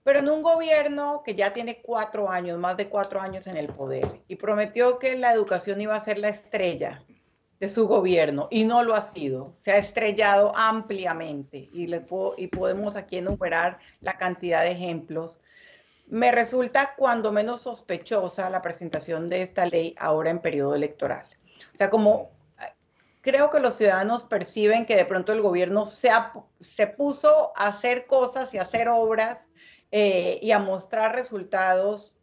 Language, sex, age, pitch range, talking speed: Spanish, female, 40-59, 175-225 Hz, 170 wpm